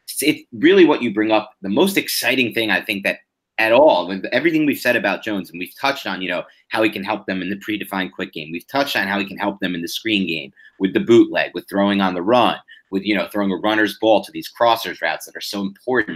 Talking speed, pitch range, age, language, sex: 265 wpm, 100-135 Hz, 30-49, English, male